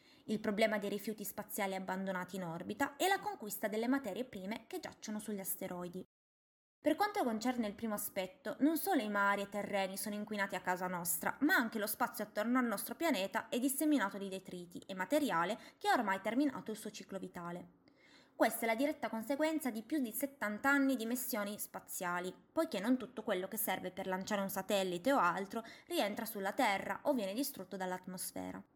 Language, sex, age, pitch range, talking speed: Italian, female, 20-39, 200-280 Hz, 185 wpm